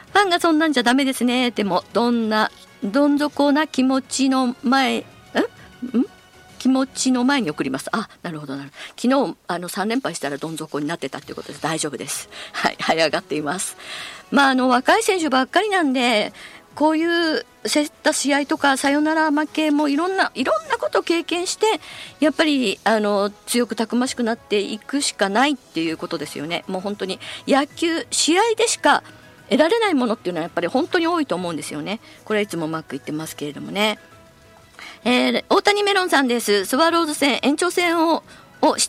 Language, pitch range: Japanese, 200-300 Hz